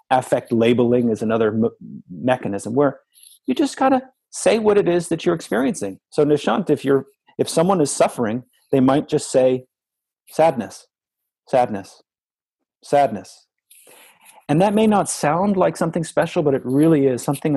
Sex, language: male, English